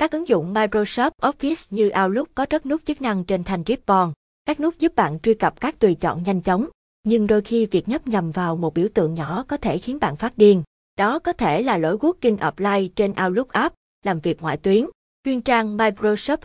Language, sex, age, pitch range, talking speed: Vietnamese, female, 20-39, 185-245 Hz, 220 wpm